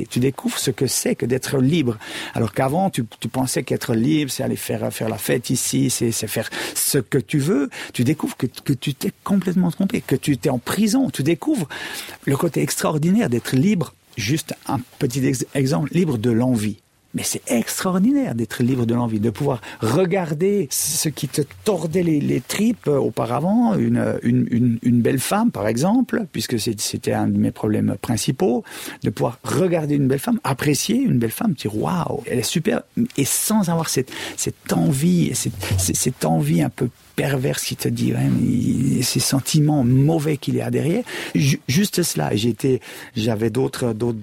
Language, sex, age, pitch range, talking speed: French, male, 50-69, 120-165 Hz, 185 wpm